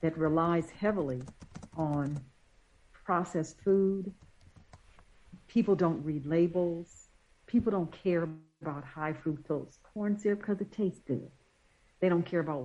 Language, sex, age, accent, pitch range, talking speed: English, female, 60-79, American, 160-205 Hz, 125 wpm